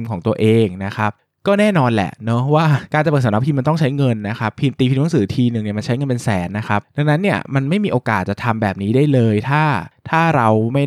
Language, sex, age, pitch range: Thai, male, 20-39, 110-145 Hz